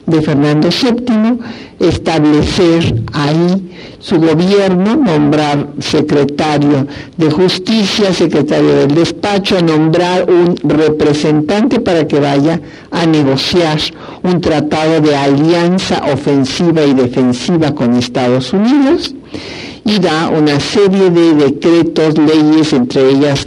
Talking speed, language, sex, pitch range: 105 wpm, Spanish, male, 140-175 Hz